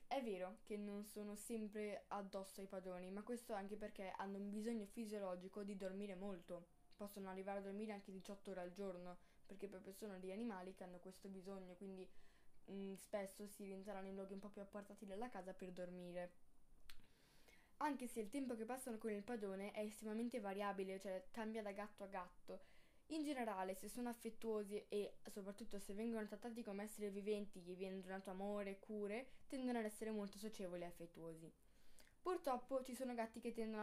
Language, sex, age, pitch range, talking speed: Italian, female, 10-29, 190-215 Hz, 180 wpm